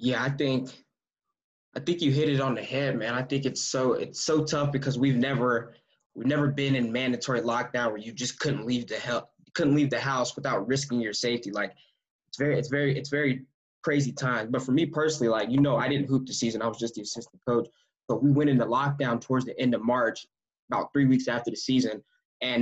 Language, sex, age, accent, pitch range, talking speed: English, male, 10-29, American, 120-140 Hz, 230 wpm